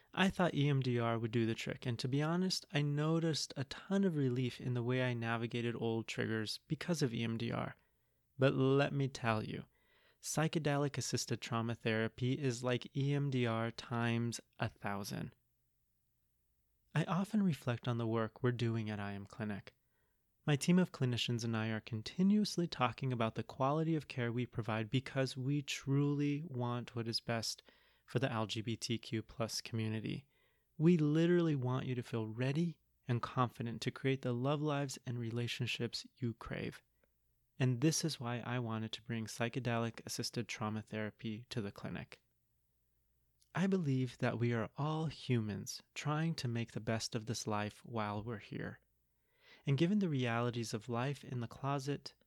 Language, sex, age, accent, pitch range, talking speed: English, male, 30-49, American, 115-140 Hz, 160 wpm